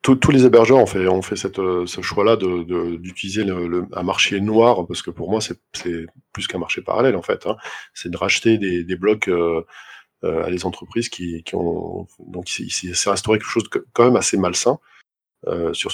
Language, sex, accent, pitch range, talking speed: French, male, French, 90-115 Hz, 215 wpm